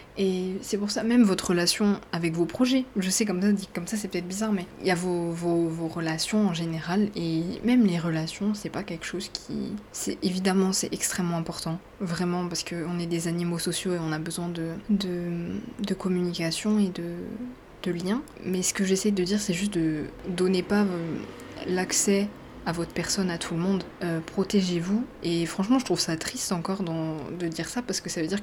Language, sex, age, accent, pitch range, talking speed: French, female, 20-39, French, 170-195 Hz, 210 wpm